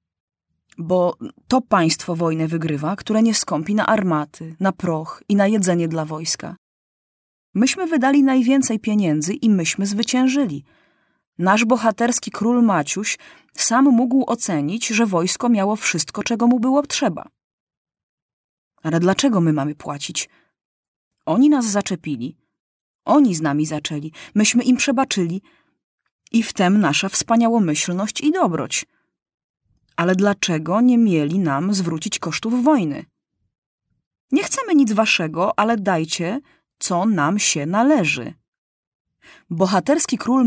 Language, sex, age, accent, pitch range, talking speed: Polish, female, 30-49, native, 170-255 Hz, 120 wpm